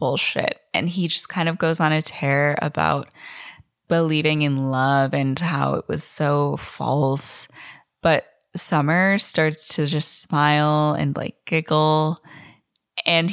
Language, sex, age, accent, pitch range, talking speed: English, female, 20-39, American, 150-175 Hz, 135 wpm